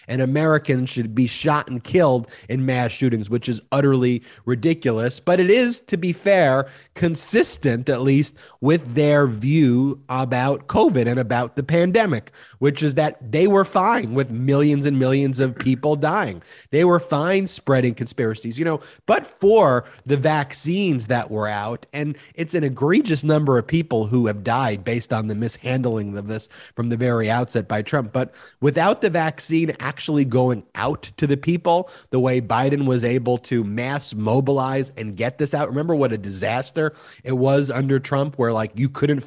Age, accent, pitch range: 30-49, American, 120-160 Hz